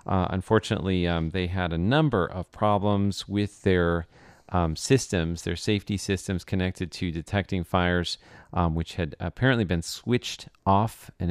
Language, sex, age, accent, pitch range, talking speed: English, male, 40-59, American, 85-105 Hz, 150 wpm